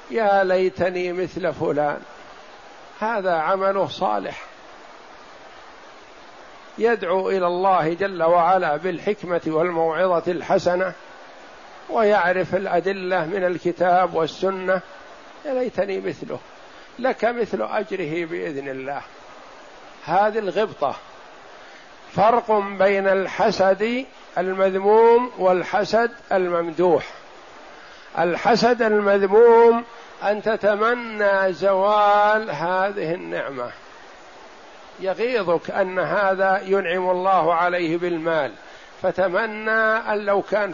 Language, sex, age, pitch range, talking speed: Arabic, male, 60-79, 180-215 Hz, 80 wpm